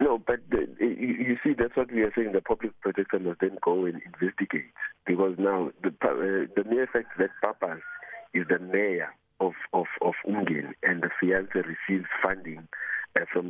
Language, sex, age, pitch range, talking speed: English, male, 50-69, 90-115 Hz, 180 wpm